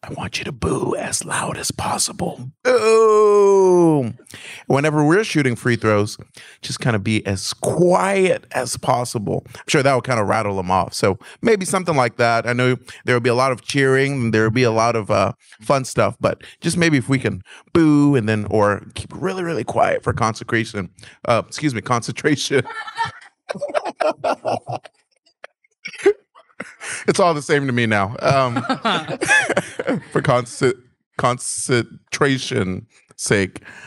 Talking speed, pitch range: 155 wpm, 110-160 Hz